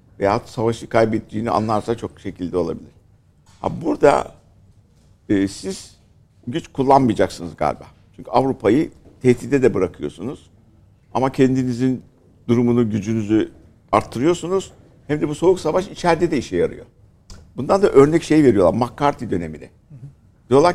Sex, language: male, Turkish